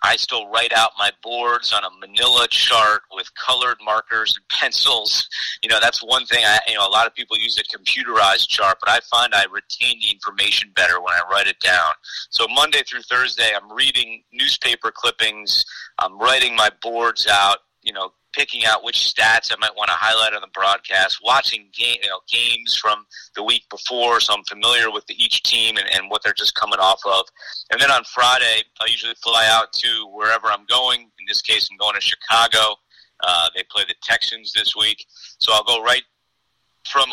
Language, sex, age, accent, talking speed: English, male, 30-49, American, 200 wpm